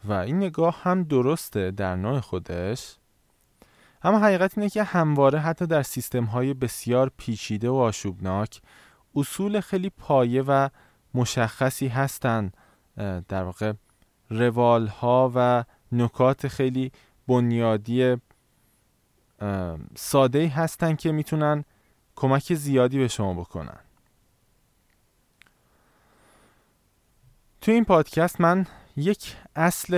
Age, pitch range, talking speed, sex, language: 20-39, 110-150 Hz, 100 wpm, male, Persian